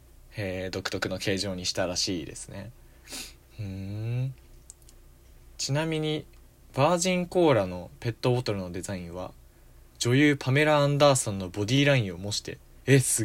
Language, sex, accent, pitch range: Japanese, male, native, 95-135 Hz